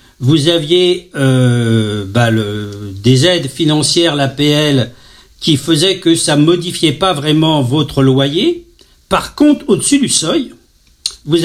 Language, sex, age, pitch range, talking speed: French, male, 60-79, 130-195 Hz, 130 wpm